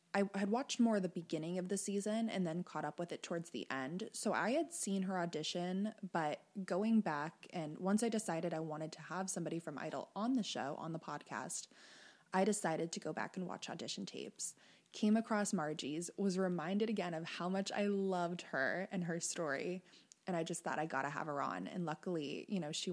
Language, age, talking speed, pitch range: English, 20-39, 215 wpm, 160-205 Hz